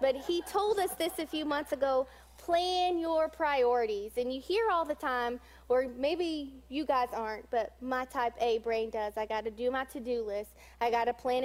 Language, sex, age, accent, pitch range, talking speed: English, female, 20-39, American, 240-310 Hz, 210 wpm